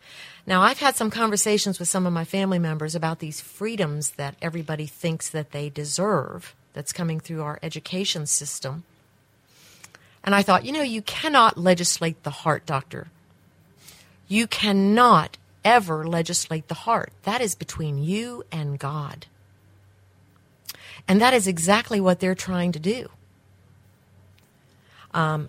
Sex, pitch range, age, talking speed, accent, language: female, 150-210 Hz, 50-69, 140 wpm, American, English